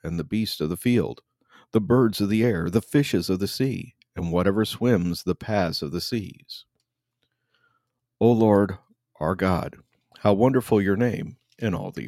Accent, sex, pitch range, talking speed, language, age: American, male, 90-125 Hz, 175 wpm, English, 50-69